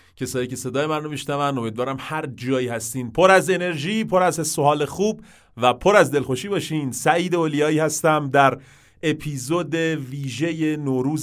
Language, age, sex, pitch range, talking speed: English, 30-49, male, 115-150 Hz, 160 wpm